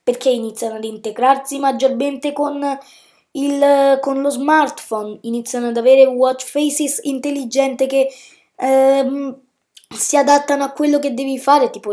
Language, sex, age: Italian, female, 20-39